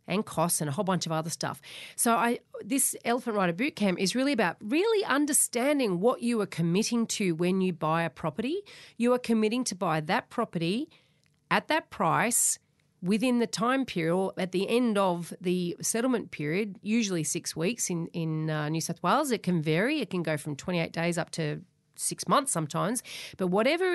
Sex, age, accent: female, 40-59, Australian